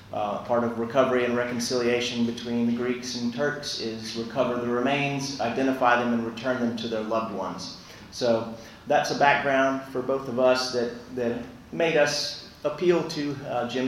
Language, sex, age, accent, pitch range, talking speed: English, male, 30-49, American, 120-135 Hz, 175 wpm